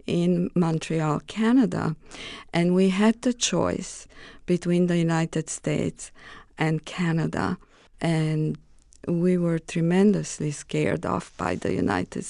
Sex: female